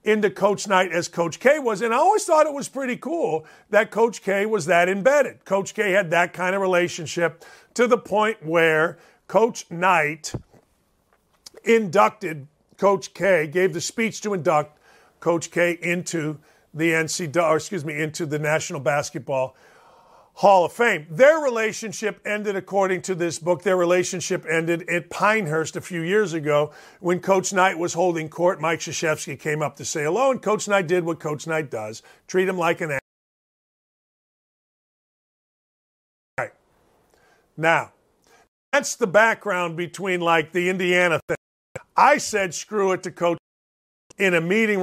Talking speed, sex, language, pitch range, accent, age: 160 wpm, male, English, 160-200 Hz, American, 50-69